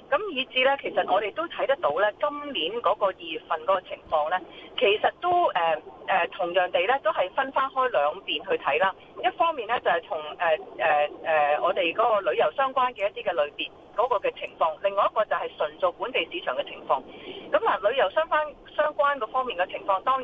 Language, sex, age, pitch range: Chinese, female, 30-49, 195-305 Hz